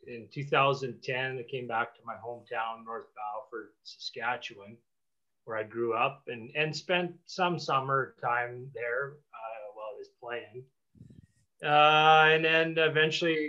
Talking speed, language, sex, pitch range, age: 140 wpm, English, male, 120-145 Hz, 30-49